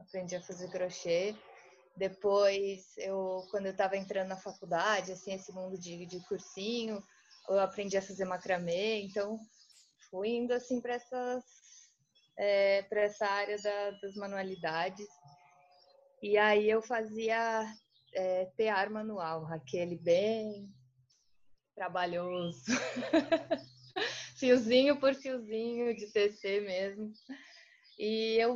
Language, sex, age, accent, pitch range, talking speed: Portuguese, female, 20-39, Brazilian, 175-220 Hz, 100 wpm